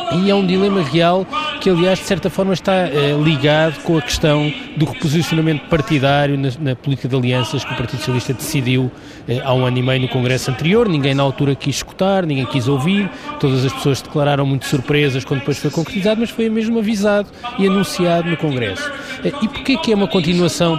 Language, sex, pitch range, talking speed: Portuguese, male, 135-185 Hz, 195 wpm